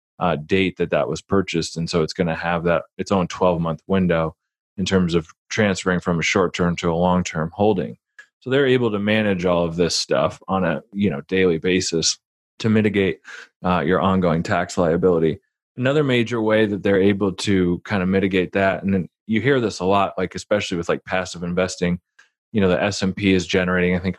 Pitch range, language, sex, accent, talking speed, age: 90-100 Hz, English, male, American, 210 wpm, 20-39